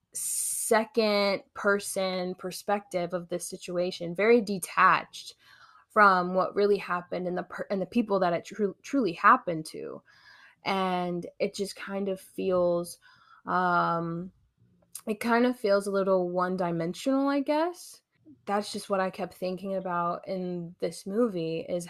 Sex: female